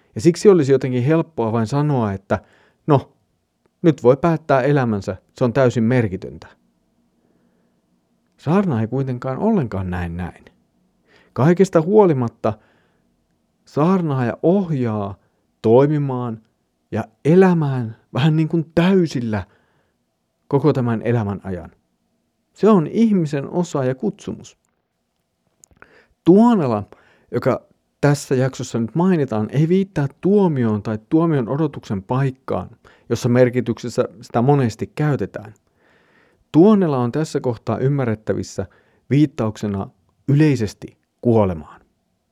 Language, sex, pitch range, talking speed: Finnish, male, 105-150 Hz, 100 wpm